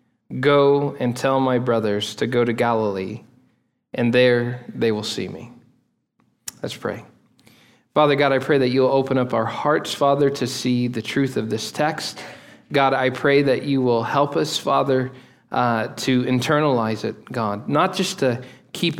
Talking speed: 165 wpm